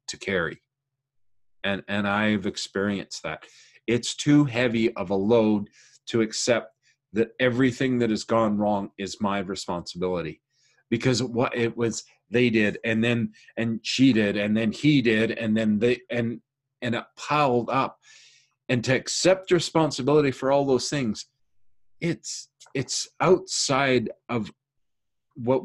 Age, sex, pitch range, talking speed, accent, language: 40-59, male, 110-135 Hz, 140 wpm, American, English